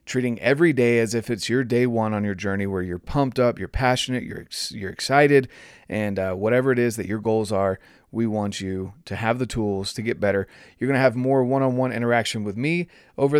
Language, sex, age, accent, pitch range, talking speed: English, male, 30-49, American, 100-130 Hz, 225 wpm